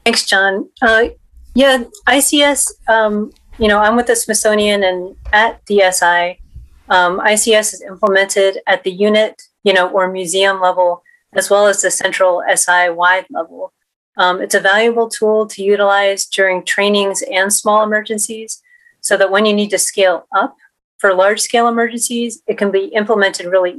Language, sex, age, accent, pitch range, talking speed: English, female, 30-49, American, 185-215 Hz, 160 wpm